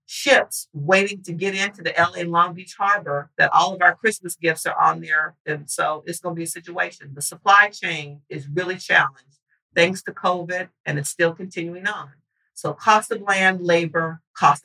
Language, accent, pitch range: English, American, 165-205 Hz